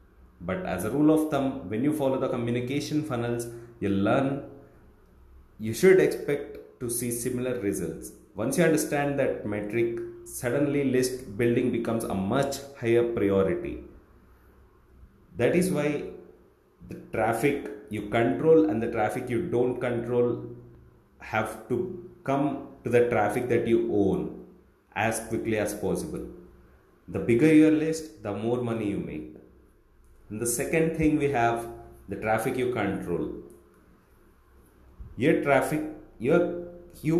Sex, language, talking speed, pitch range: male, English, 130 wpm, 100-140 Hz